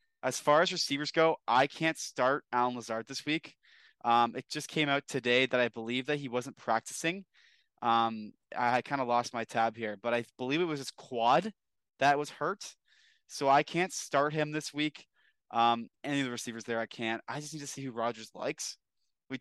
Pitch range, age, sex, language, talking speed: 115-140 Hz, 20-39, male, English, 205 wpm